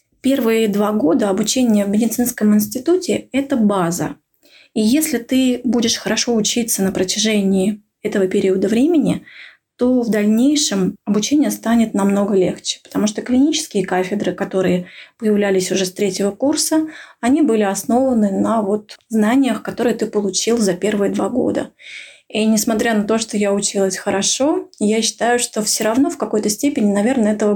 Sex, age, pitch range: female, 20-39, 200-245 Hz